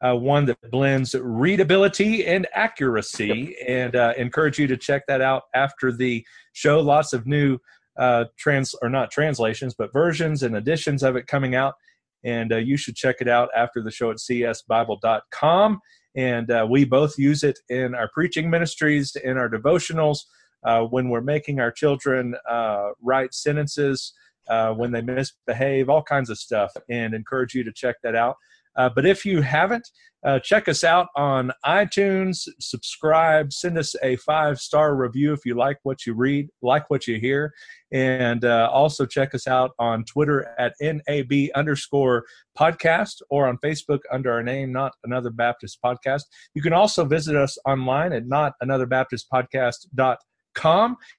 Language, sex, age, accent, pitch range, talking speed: English, male, 40-59, American, 125-150 Hz, 165 wpm